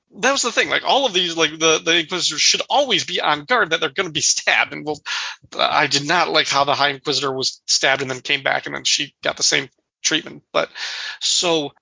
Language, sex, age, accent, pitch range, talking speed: English, male, 30-49, American, 140-175 Hz, 245 wpm